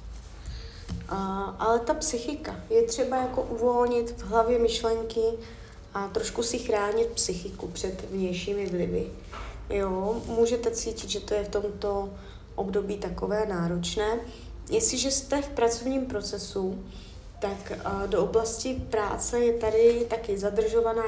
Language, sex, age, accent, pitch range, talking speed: Czech, female, 20-39, native, 195-240 Hz, 115 wpm